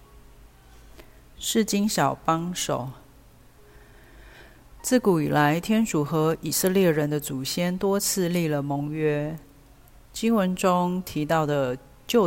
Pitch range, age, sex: 140-175 Hz, 40-59, female